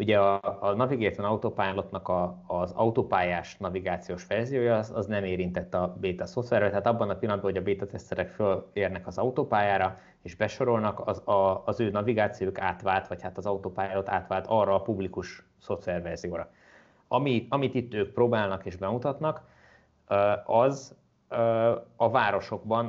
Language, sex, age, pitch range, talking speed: Hungarian, male, 30-49, 95-115 Hz, 140 wpm